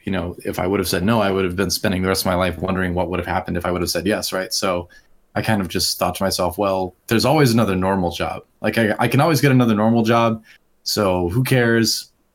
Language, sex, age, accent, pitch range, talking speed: English, male, 30-49, American, 95-120 Hz, 270 wpm